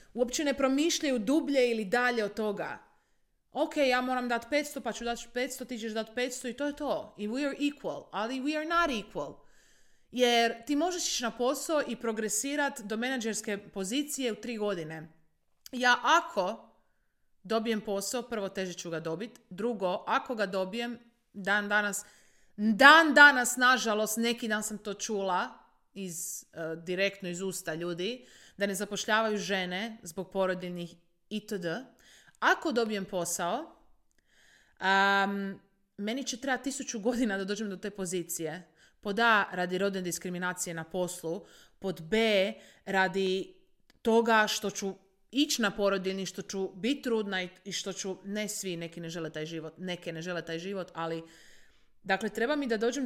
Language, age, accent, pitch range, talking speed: Croatian, 30-49, native, 190-245 Hz, 155 wpm